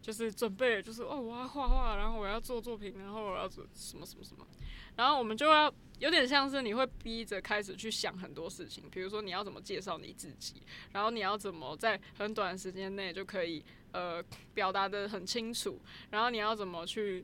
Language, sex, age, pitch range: Chinese, female, 20-39, 195-235 Hz